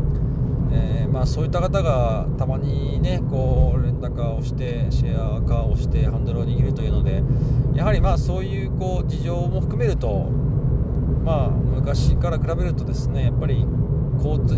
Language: Japanese